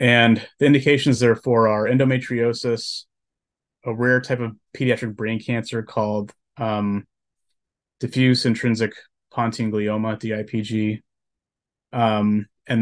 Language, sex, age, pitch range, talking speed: English, male, 30-49, 105-120 Hz, 105 wpm